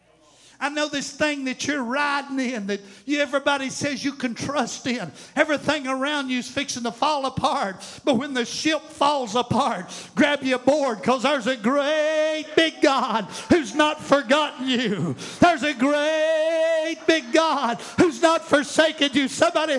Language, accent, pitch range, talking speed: English, American, 280-325 Hz, 160 wpm